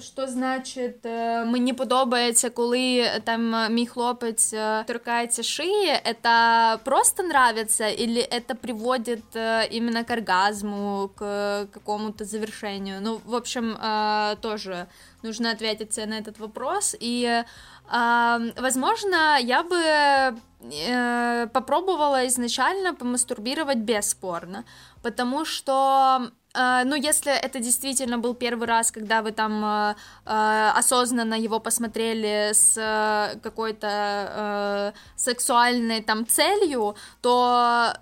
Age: 10-29